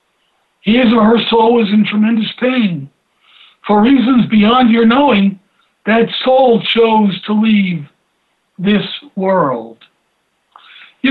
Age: 60-79